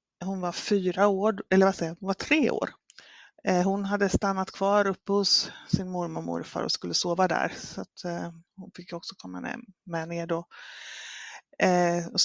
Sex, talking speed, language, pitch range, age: female, 170 wpm, Swedish, 170-195 Hz, 30-49